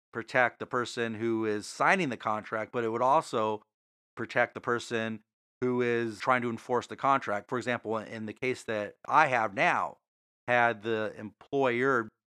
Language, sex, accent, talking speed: English, male, American, 165 wpm